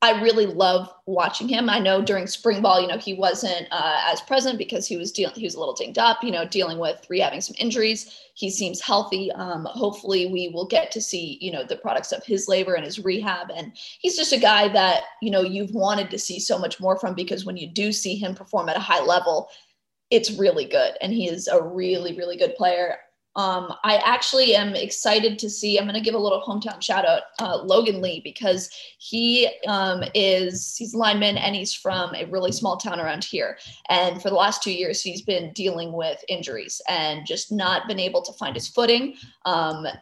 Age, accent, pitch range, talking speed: 20-39, American, 185-225 Hz, 220 wpm